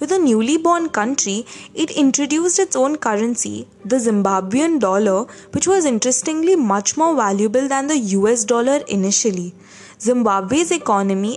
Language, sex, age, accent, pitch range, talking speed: English, female, 20-39, Indian, 200-290 Hz, 135 wpm